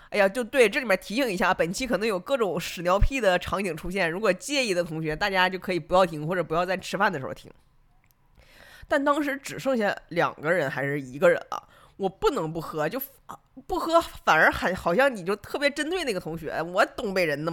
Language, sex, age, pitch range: Chinese, female, 20-39, 155-245 Hz